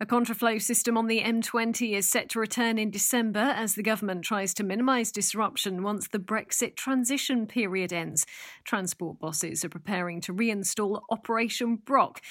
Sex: female